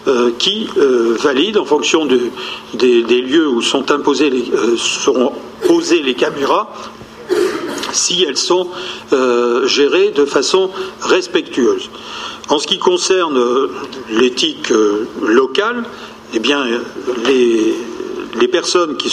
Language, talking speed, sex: French, 100 wpm, male